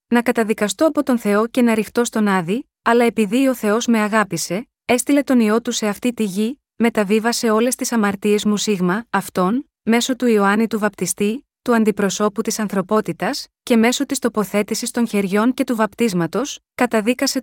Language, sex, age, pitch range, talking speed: Greek, female, 20-39, 205-245 Hz, 170 wpm